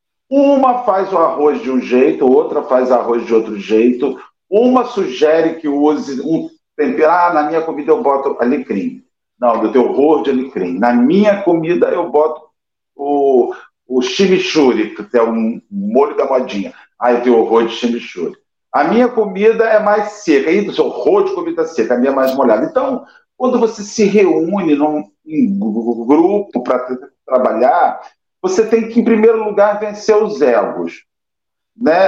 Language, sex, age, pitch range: Portuguese, male, 50-69, 150-240 Hz